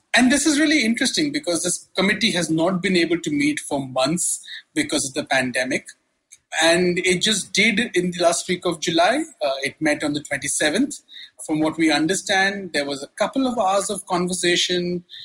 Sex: male